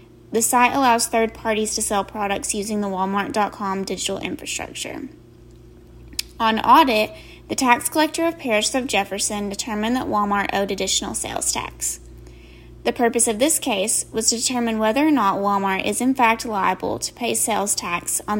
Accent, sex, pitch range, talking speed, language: American, female, 200-240 Hz, 165 wpm, English